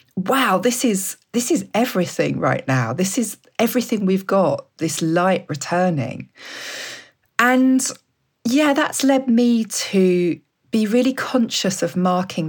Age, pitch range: 40-59, 150-195 Hz